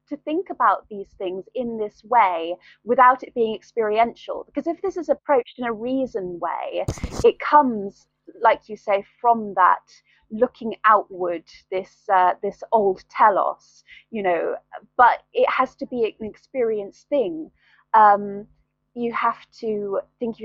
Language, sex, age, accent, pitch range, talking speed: English, female, 30-49, British, 205-265 Hz, 150 wpm